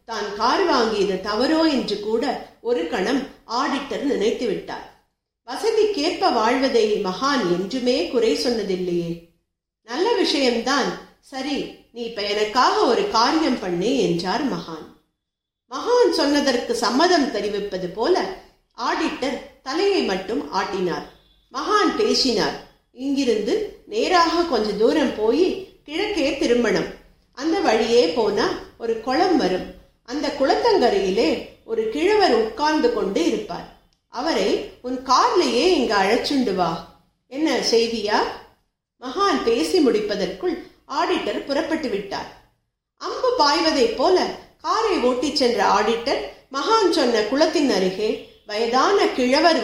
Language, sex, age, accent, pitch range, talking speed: Tamil, female, 50-69, native, 230-345 Hz, 95 wpm